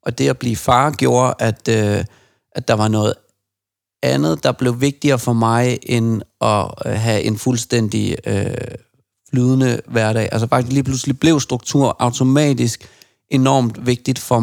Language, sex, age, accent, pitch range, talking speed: Danish, male, 40-59, native, 110-125 Hz, 150 wpm